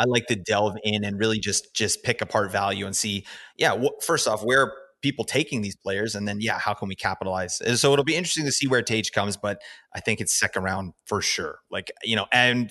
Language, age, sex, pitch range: English, 30-49, male, 105-155 Hz